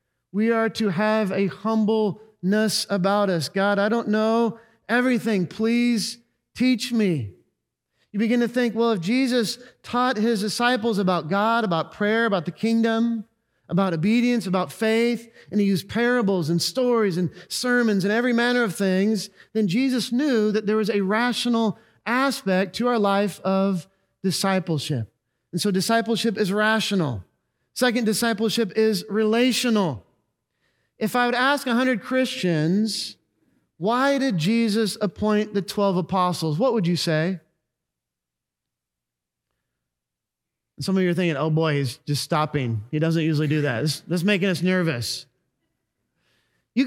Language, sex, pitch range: English, male, 185-235 Hz